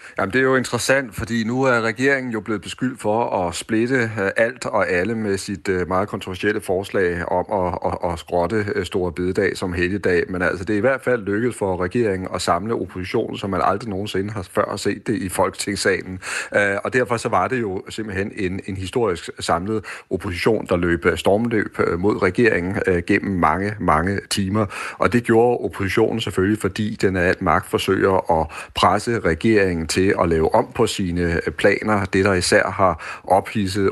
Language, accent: Danish, native